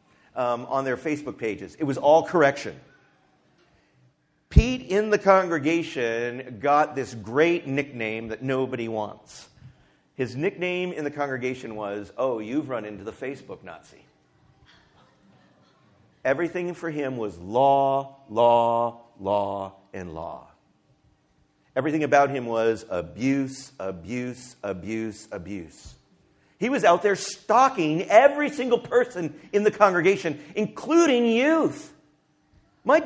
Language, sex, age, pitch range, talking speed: English, male, 50-69, 110-165 Hz, 115 wpm